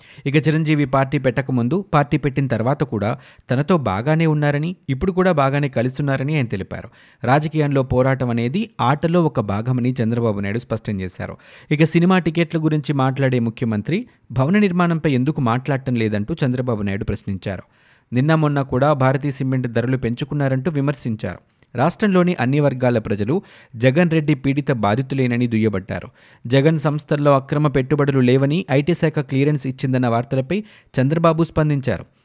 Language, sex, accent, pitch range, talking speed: Telugu, male, native, 120-150 Hz, 130 wpm